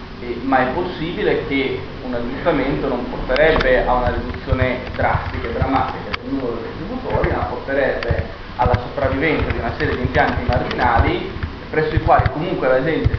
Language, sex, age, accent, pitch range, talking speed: Italian, male, 20-39, native, 120-130 Hz, 160 wpm